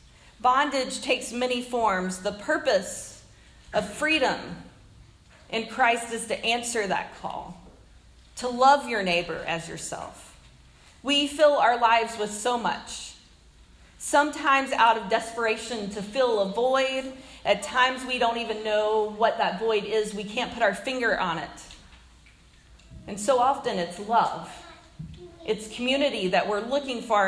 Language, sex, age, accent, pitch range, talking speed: English, female, 40-59, American, 210-245 Hz, 140 wpm